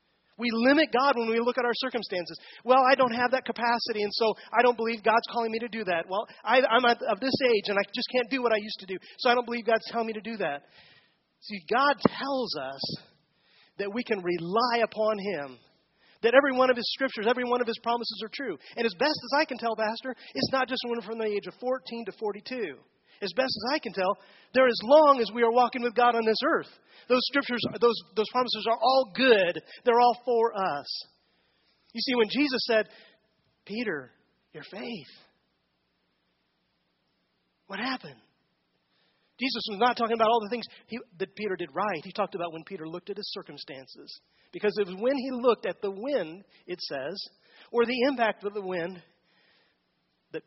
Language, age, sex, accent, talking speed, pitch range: English, 30-49, male, American, 205 wpm, 200-245 Hz